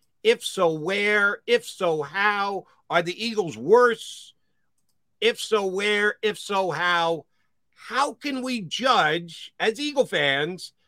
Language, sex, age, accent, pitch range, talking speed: English, male, 50-69, American, 175-250 Hz, 125 wpm